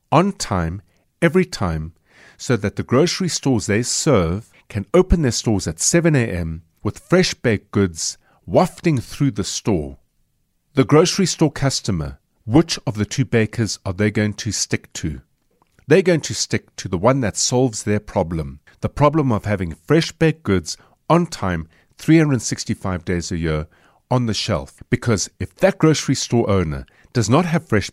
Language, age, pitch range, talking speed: English, 50-69, 90-135 Hz, 165 wpm